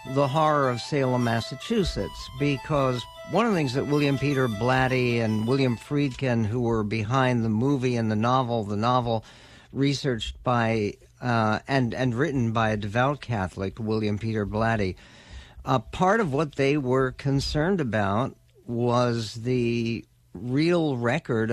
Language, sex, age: English, male, 60-79